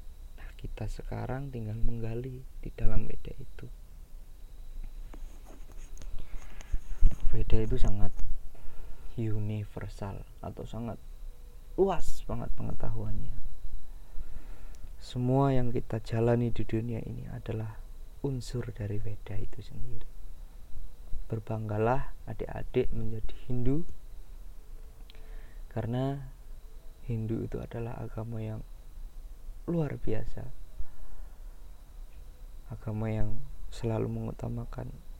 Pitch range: 90-120 Hz